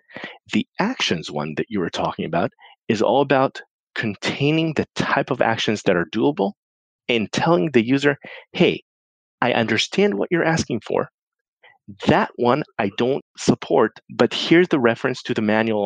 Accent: American